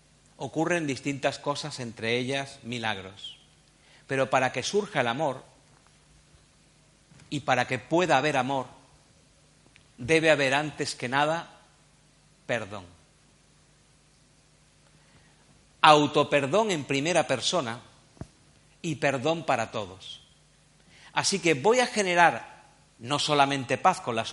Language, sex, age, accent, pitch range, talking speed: Spanish, male, 50-69, Spanish, 120-160 Hz, 105 wpm